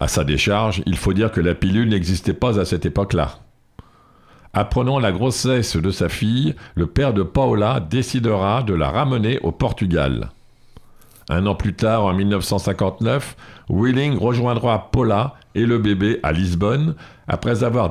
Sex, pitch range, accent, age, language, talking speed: male, 95-120 Hz, French, 60-79, French, 155 wpm